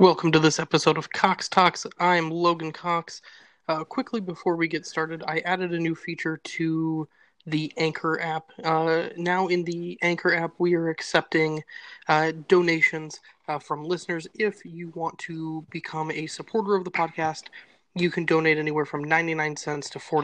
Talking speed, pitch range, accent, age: 170 wpm, 150-170 Hz, American, 20-39